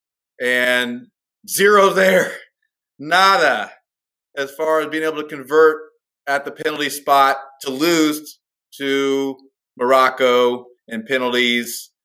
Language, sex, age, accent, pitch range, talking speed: English, male, 30-49, American, 130-170 Hz, 105 wpm